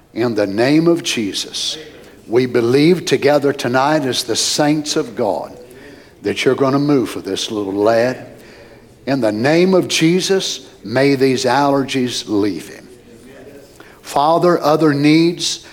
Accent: American